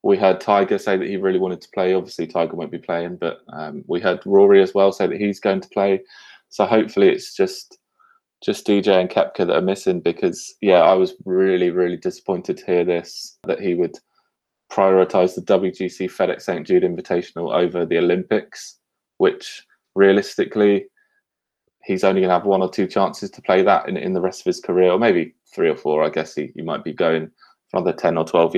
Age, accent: 20-39, British